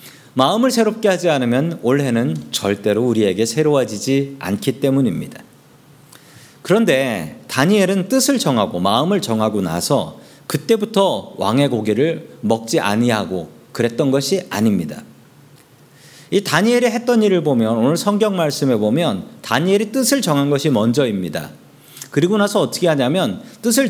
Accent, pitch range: native, 130-205 Hz